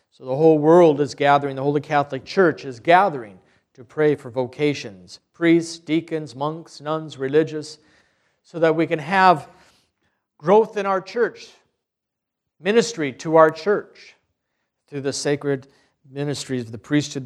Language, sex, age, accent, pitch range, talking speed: English, male, 50-69, American, 140-195 Hz, 140 wpm